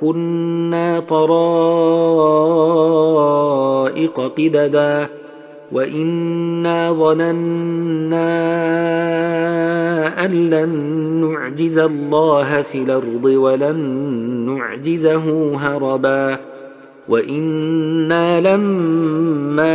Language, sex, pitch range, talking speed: Arabic, male, 145-165 Hz, 50 wpm